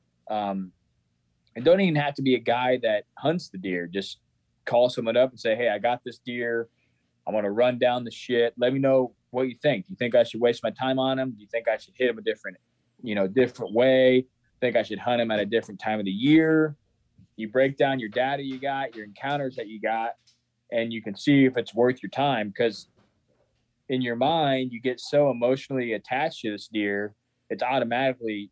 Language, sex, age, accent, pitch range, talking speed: English, male, 20-39, American, 105-130 Hz, 225 wpm